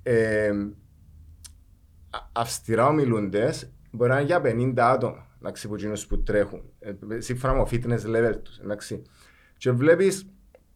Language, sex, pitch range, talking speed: Greek, male, 105-135 Hz, 115 wpm